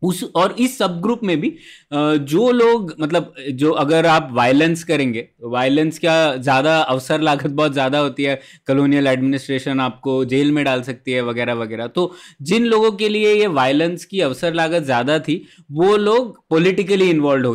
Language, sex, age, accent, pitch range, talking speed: Hindi, male, 20-39, native, 130-175 Hz, 170 wpm